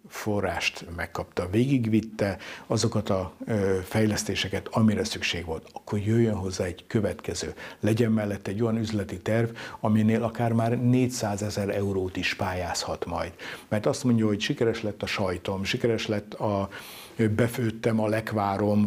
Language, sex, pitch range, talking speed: Hungarian, male, 100-115 Hz, 145 wpm